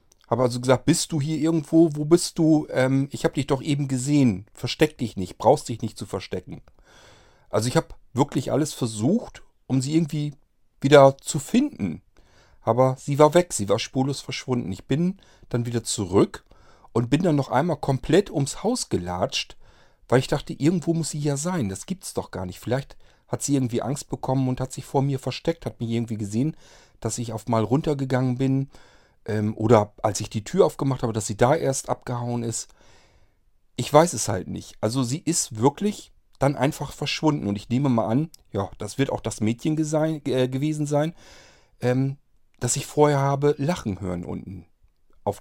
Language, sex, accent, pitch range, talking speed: German, male, German, 115-150 Hz, 190 wpm